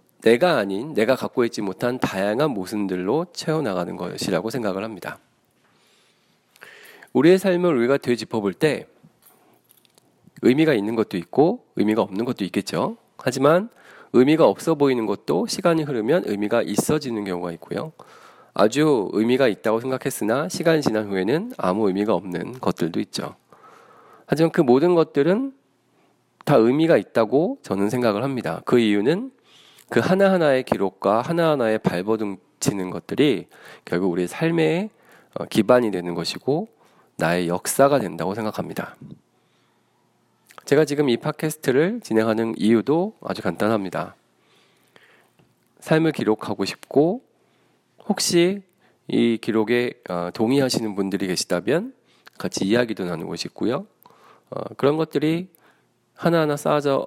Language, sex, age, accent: Korean, male, 40-59, native